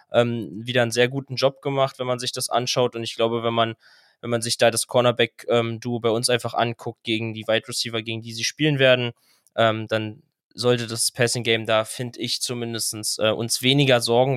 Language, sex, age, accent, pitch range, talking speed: German, male, 20-39, German, 115-130 Hz, 210 wpm